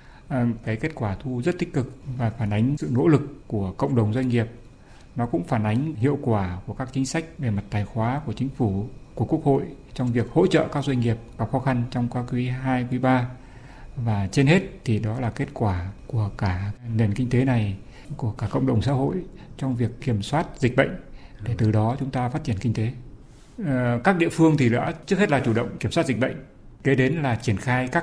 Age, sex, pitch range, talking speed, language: 60-79, male, 115-140 Hz, 230 wpm, Vietnamese